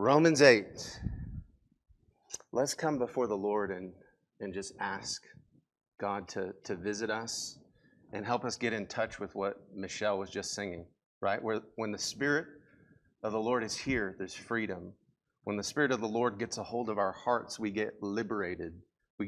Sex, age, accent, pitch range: male, 30-49, American, 105-125 Hz